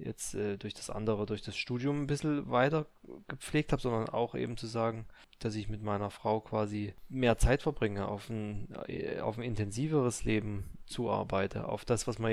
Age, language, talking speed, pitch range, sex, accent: 20-39, German, 185 wpm, 105-125 Hz, male, German